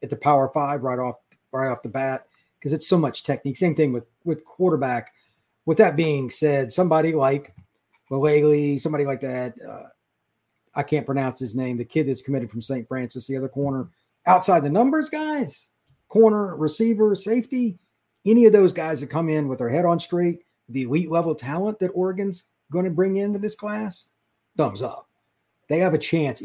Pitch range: 130-175 Hz